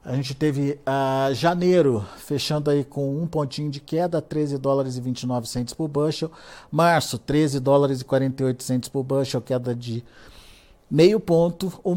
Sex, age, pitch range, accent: male, 50-69, 130-150 Hz, Brazilian